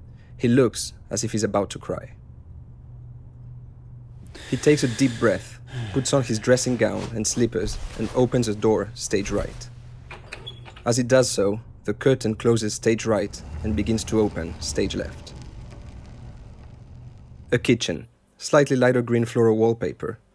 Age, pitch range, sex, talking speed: 30-49, 105-120 Hz, male, 140 wpm